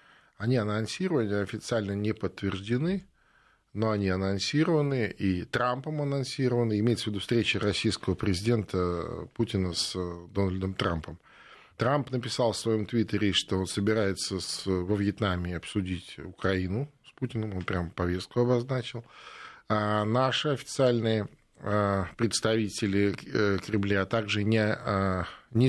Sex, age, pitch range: male, 20-39, 95-120 Hz